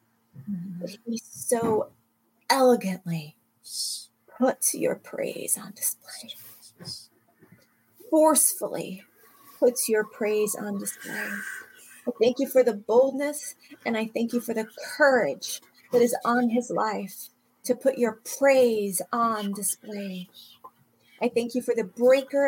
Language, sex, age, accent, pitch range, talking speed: English, female, 30-49, American, 200-275 Hz, 120 wpm